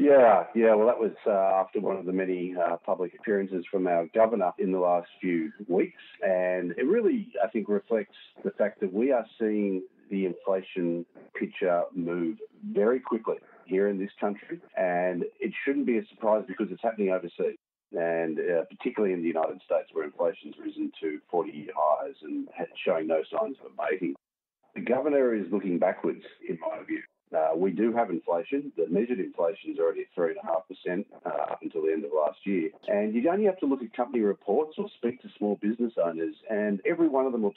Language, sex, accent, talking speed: English, male, Australian, 195 wpm